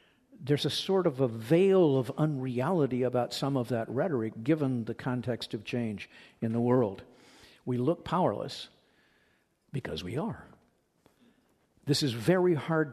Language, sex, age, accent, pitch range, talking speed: English, male, 50-69, American, 125-160 Hz, 145 wpm